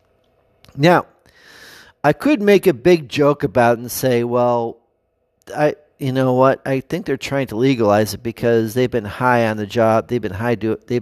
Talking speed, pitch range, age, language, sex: 190 wpm, 105-130 Hz, 40-59, English, male